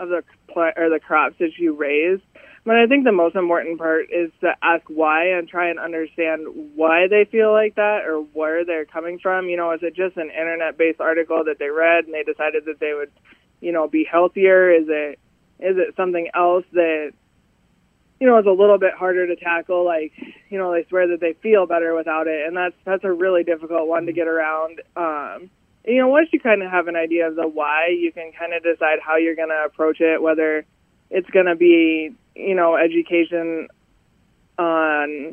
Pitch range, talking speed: 160-185 Hz, 210 wpm